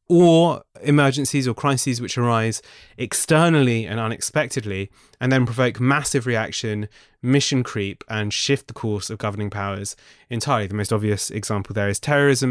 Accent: British